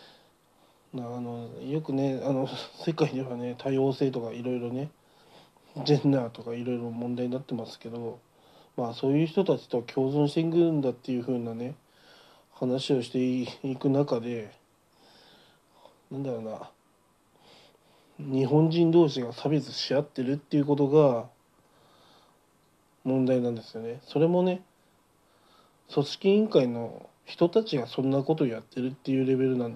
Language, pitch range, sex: Japanese, 120-145 Hz, male